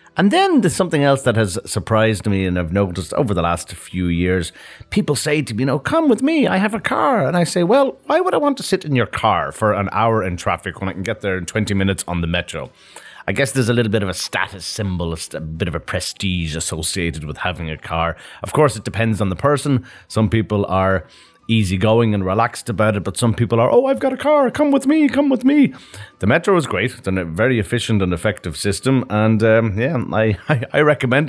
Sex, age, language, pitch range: male, 30-49, Russian, 95-135 Hz